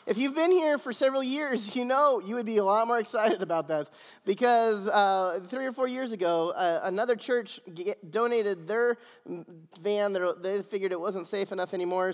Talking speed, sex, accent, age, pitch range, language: 190 wpm, male, American, 30-49, 170-215 Hz, English